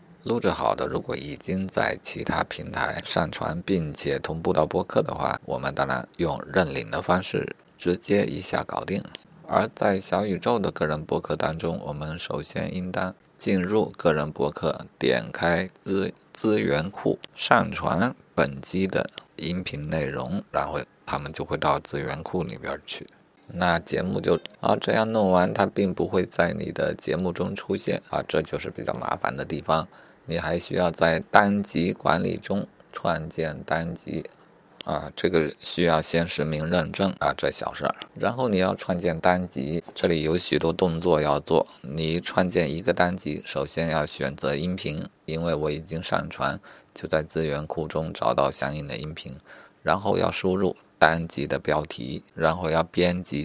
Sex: male